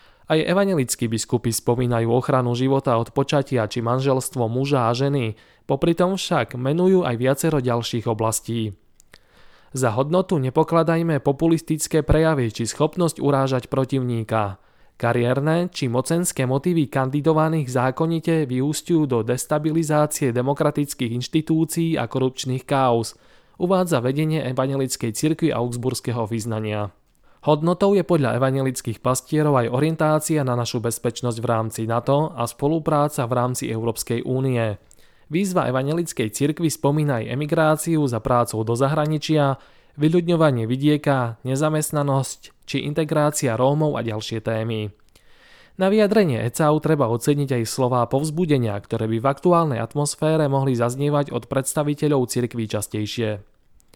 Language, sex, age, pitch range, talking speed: Slovak, male, 20-39, 120-155 Hz, 120 wpm